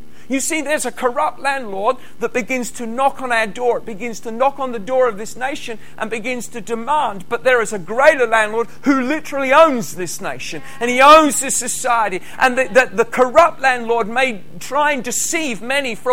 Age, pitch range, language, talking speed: 40-59, 210-260 Hz, English, 205 wpm